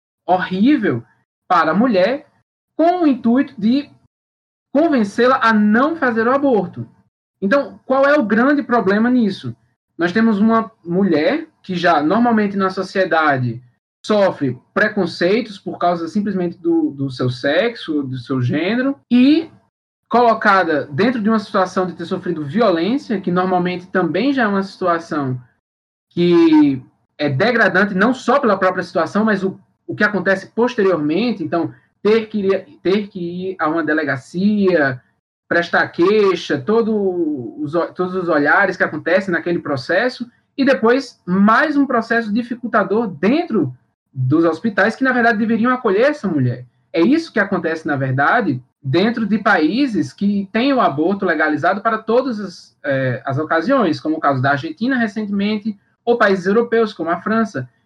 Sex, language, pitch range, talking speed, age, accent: male, Portuguese, 165-235 Hz, 145 wpm, 20-39, Brazilian